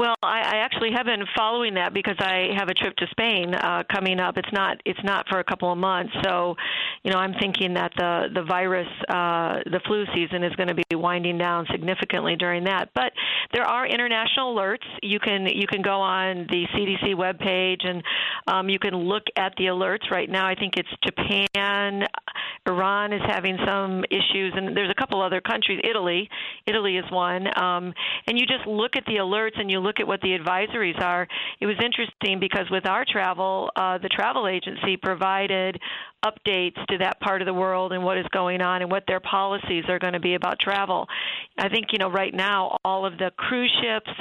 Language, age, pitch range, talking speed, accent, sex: English, 50-69, 185-205 Hz, 205 wpm, American, female